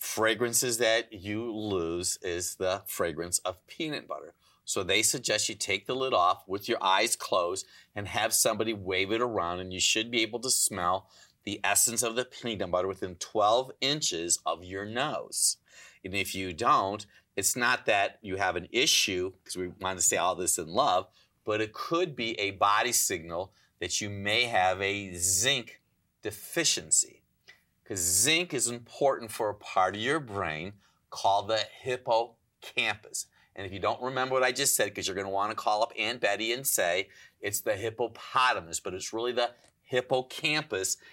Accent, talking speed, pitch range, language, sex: American, 180 wpm, 95-120 Hz, English, male